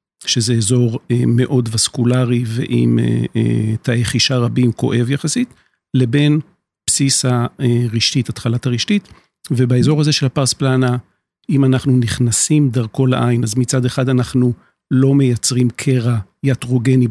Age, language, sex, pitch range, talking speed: 50-69, Hebrew, male, 125-145 Hz, 125 wpm